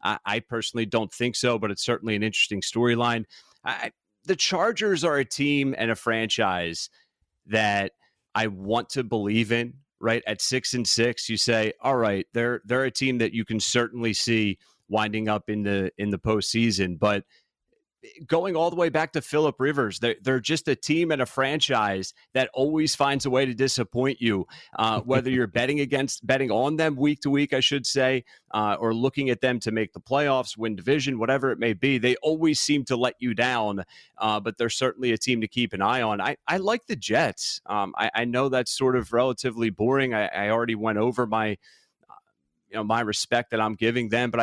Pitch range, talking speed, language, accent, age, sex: 110-130 Hz, 205 wpm, English, American, 30-49, male